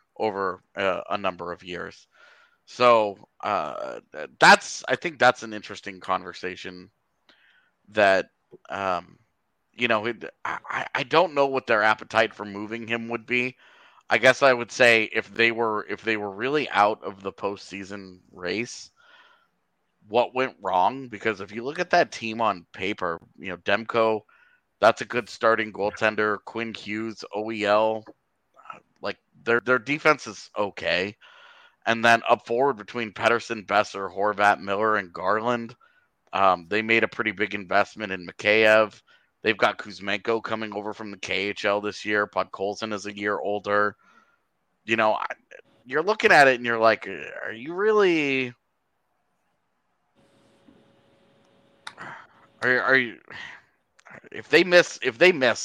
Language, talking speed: English, 145 wpm